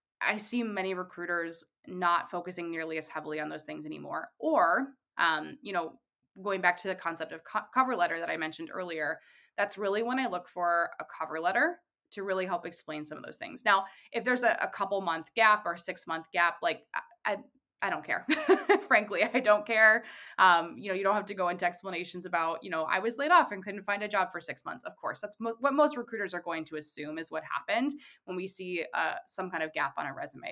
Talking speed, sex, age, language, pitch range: 235 wpm, female, 20-39, English, 170-230 Hz